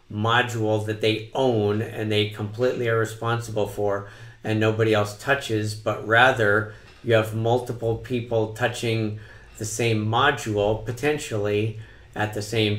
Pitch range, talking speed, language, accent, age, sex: 110-120 Hz, 130 wpm, English, American, 50-69, male